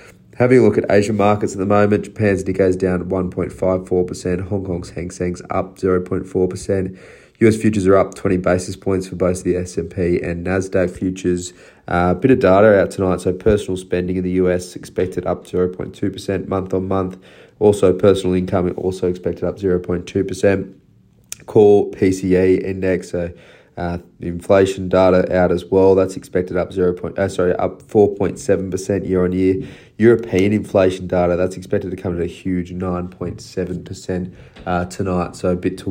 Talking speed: 165 wpm